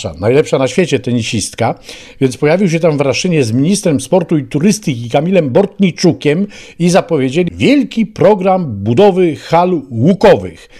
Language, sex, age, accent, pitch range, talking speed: Polish, male, 50-69, native, 130-175 Hz, 135 wpm